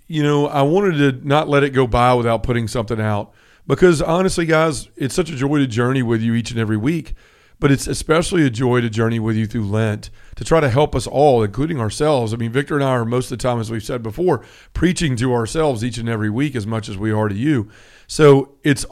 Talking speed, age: 245 wpm, 40-59